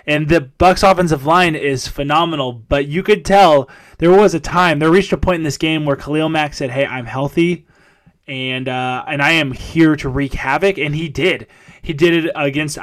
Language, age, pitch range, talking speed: English, 20-39, 140-170 Hz, 210 wpm